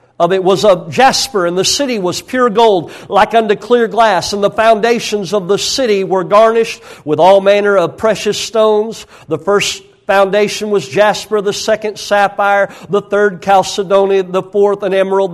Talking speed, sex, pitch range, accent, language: 170 wpm, male, 190-220 Hz, American, English